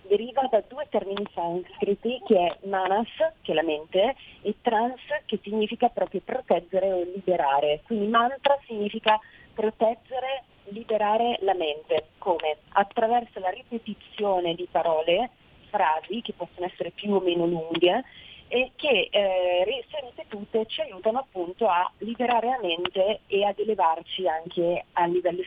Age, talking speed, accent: 40-59, 140 wpm, native